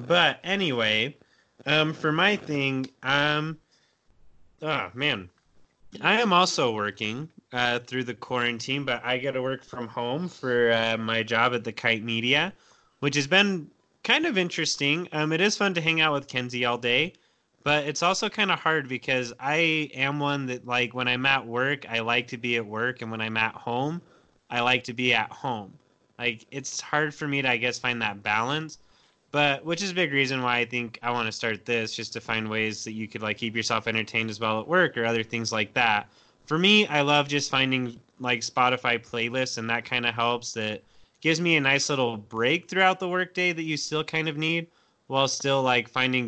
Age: 20-39